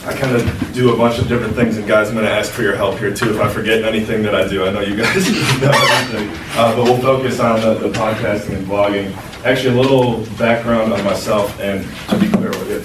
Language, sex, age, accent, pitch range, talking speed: English, male, 20-39, American, 105-125 Hz, 260 wpm